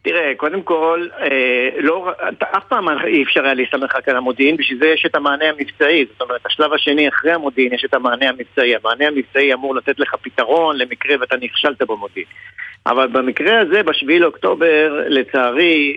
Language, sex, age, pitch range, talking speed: Hebrew, male, 50-69, 130-170 Hz, 175 wpm